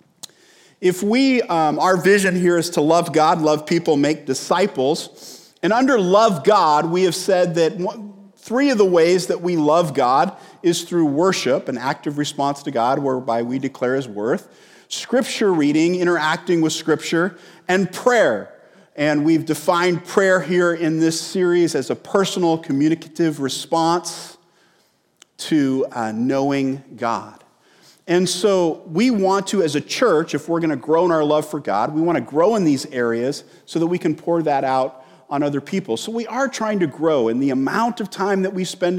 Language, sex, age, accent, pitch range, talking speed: English, male, 40-59, American, 145-185 Hz, 180 wpm